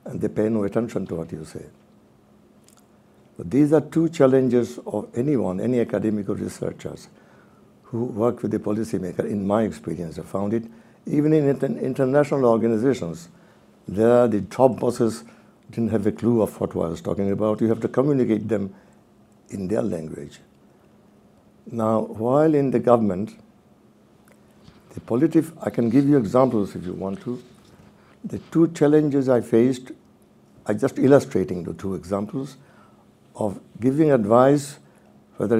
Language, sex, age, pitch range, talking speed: English, male, 60-79, 100-130 Hz, 150 wpm